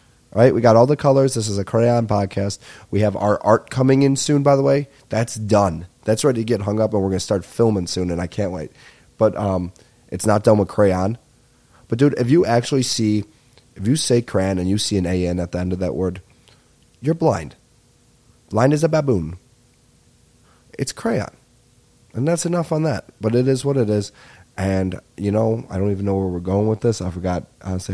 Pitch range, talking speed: 95-120 Hz, 220 wpm